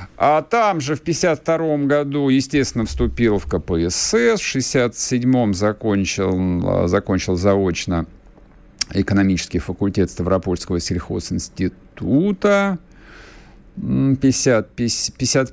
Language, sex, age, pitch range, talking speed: Russian, male, 50-69, 95-135 Hz, 85 wpm